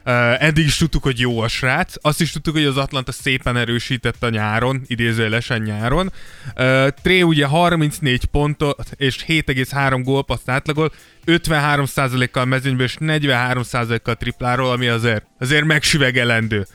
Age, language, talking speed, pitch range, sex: 20-39, Hungarian, 135 wpm, 125-155 Hz, male